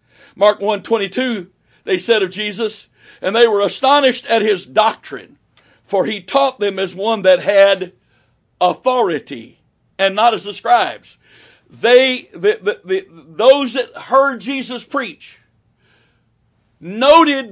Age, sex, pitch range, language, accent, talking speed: 60-79, male, 180-265 Hz, English, American, 135 wpm